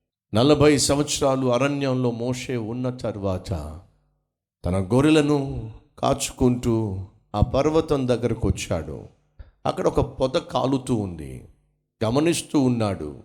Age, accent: 50-69, native